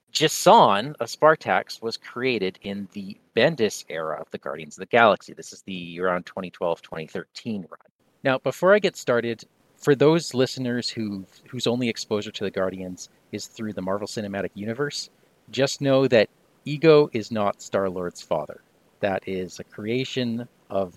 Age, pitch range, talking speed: 40-59, 100-135 Hz, 160 wpm